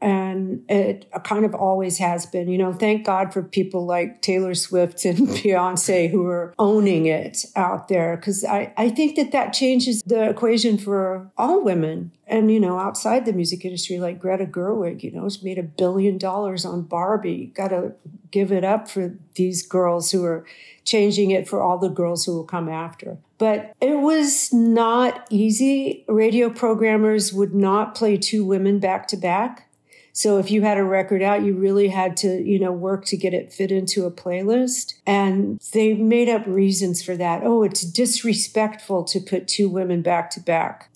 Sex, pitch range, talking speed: female, 180-215 Hz, 185 wpm